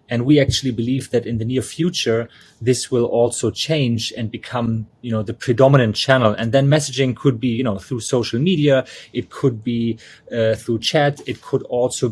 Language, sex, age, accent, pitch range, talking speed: English, male, 30-49, German, 115-130 Hz, 195 wpm